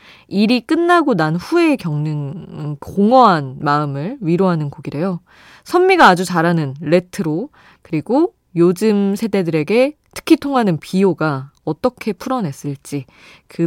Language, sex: Korean, female